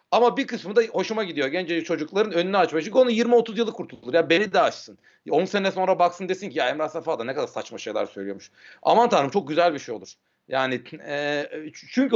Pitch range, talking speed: 170-220 Hz, 220 wpm